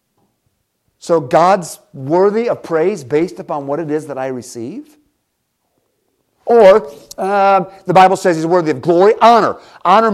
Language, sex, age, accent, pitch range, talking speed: English, male, 50-69, American, 150-200 Hz, 140 wpm